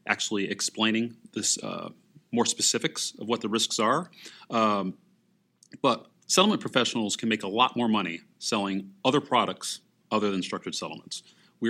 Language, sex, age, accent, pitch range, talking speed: English, male, 30-49, American, 100-120 Hz, 150 wpm